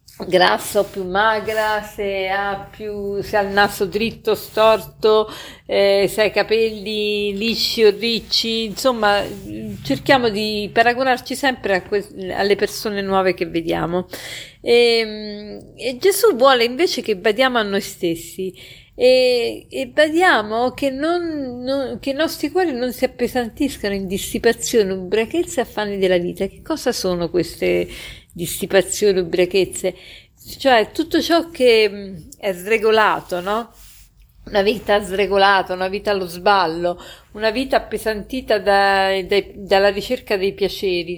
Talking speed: 130 wpm